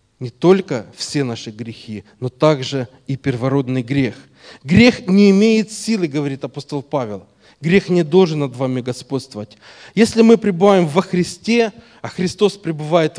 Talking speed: 140 wpm